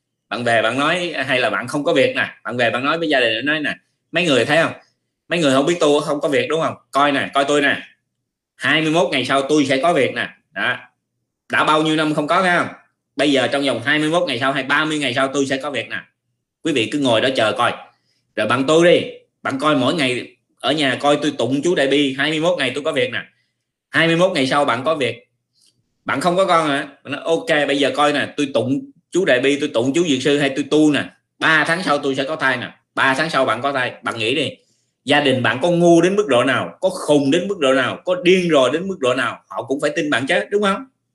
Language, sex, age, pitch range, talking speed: Vietnamese, male, 20-39, 135-165 Hz, 260 wpm